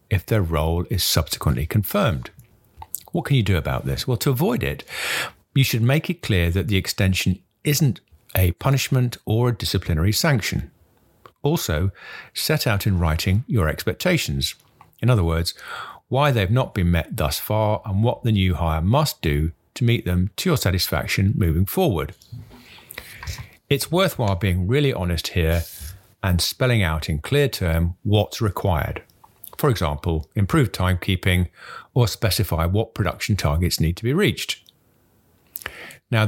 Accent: British